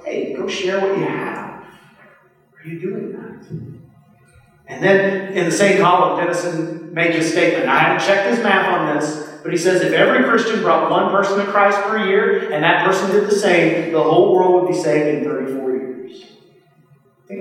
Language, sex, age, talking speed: English, male, 40-59, 195 wpm